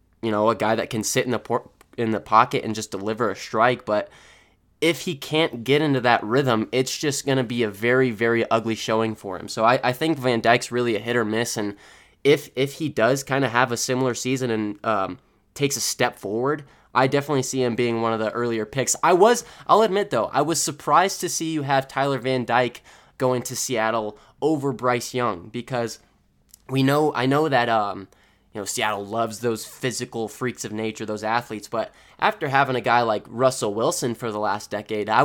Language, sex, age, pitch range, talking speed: English, male, 20-39, 110-130 Hz, 215 wpm